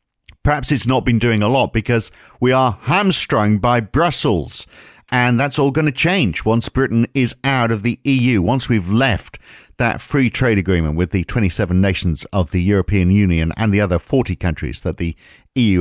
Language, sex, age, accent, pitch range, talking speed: English, male, 50-69, British, 95-135 Hz, 185 wpm